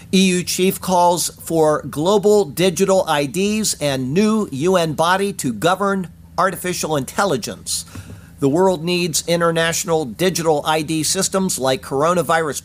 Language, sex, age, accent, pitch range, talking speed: English, male, 50-69, American, 150-195 Hz, 115 wpm